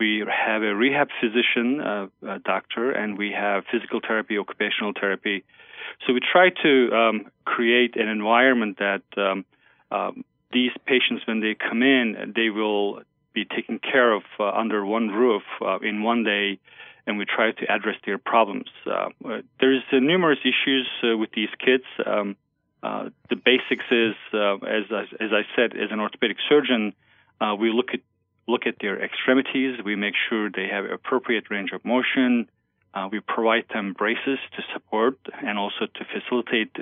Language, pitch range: English, 105-120 Hz